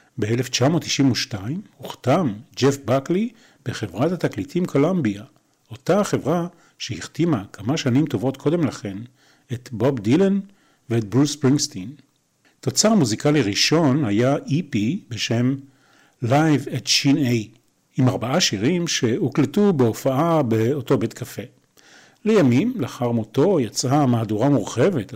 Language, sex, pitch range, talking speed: Hebrew, male, 115-150 Hz, 105 wpm